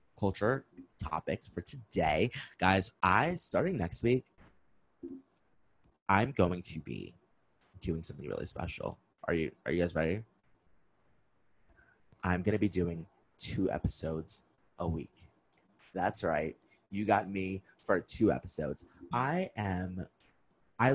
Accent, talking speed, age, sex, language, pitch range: American, 120 wpm, 30-49, male, English, 85-105 Hz